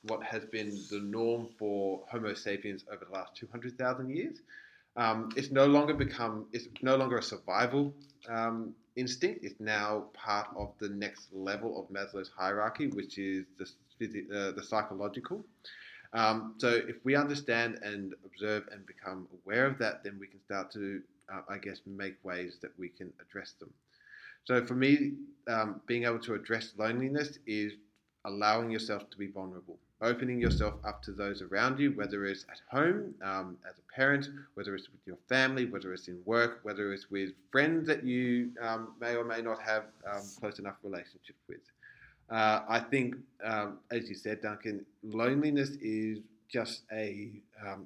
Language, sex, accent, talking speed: English, male, Australian, 170 wpm